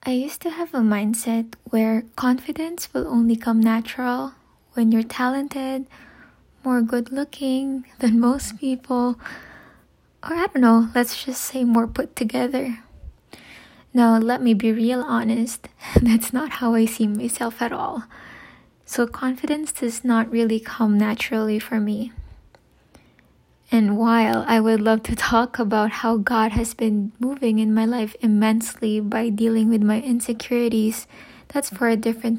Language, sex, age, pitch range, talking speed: English, female, 20-39, 225-250 Hz, 145 wpm